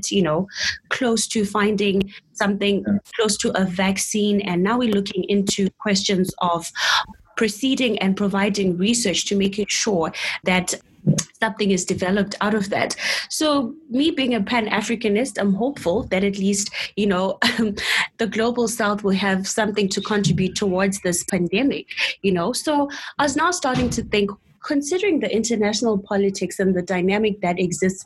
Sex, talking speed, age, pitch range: female, 155 wpm, 20-39, 185-220 Hz